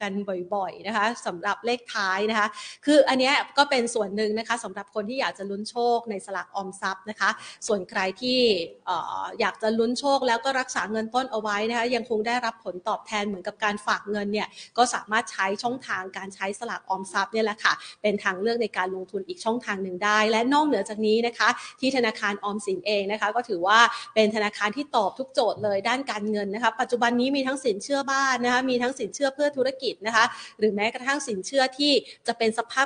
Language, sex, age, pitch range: Thai, female, 30-49, 205-255 Hz